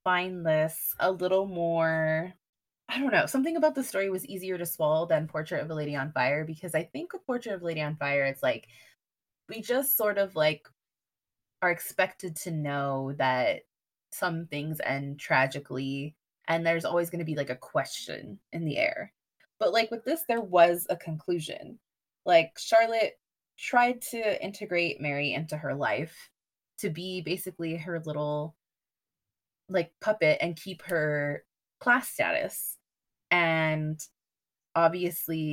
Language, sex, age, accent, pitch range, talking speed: English, female, 20-39, American, 150-185 Hz, 150 wpm